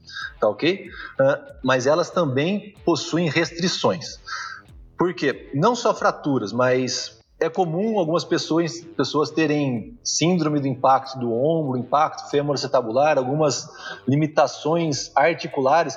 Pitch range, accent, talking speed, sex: 135-175 Hz, Brazilian, 115 wpm, male